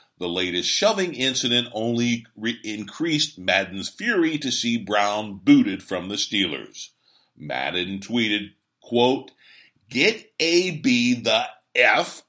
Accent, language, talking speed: American, English, 110 wpm